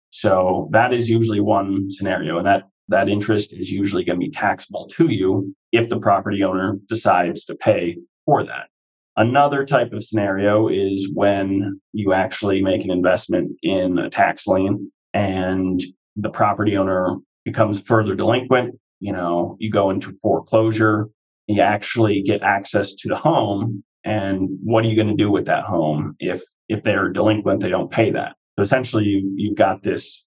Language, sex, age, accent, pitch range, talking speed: English, male, 30-49, American, 95-115 Hz, 170 wpm